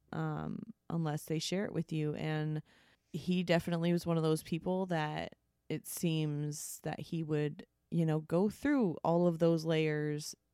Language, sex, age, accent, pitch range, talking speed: English, female, 20-39, American, 155-185 Hz, 165 wpm